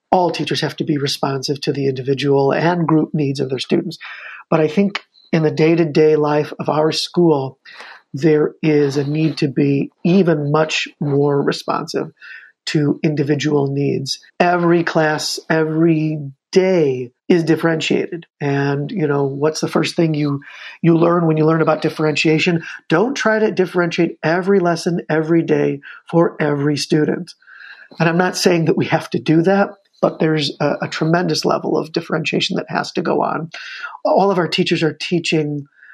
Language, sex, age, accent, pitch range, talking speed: English, male, 50-69, American, 150-175 Hz, 170 wpm